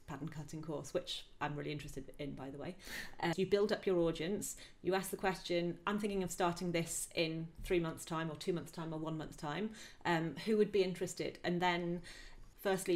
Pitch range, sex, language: 165-190 Hz, female, English